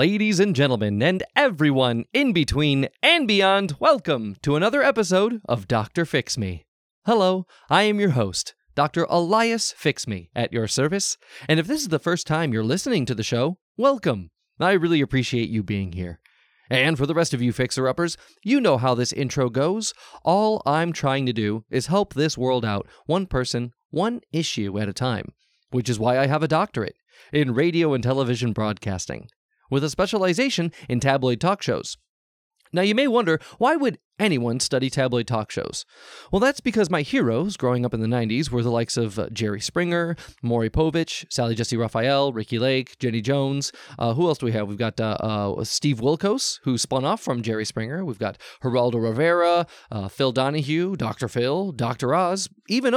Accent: American